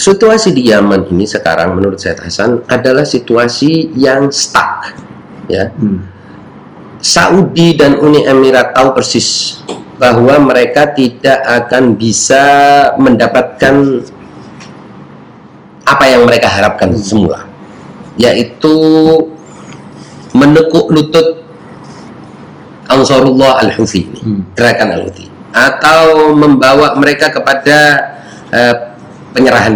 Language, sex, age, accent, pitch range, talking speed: Indonesian, male, 40-59, native, 120-190 Hz, 85 wpm